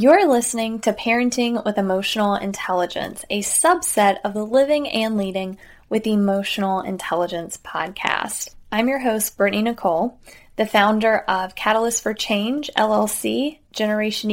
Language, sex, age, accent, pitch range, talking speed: English, female, 10-29, American, 200-245 Hz, 130 wpm